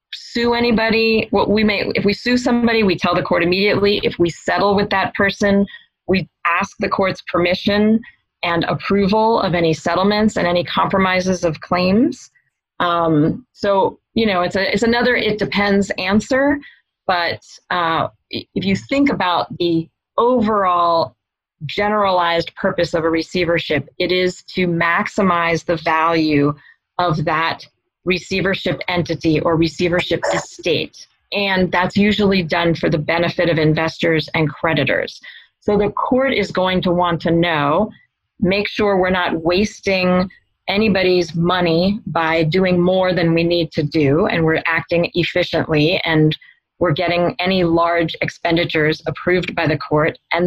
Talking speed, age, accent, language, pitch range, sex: 145 wpm, 30-49, American, English, 170-205 Hz, female